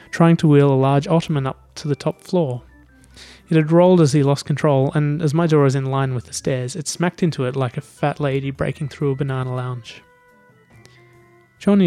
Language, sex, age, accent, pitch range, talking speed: English, male, 20-39, Australian, 130-155 Hz, 210 wpm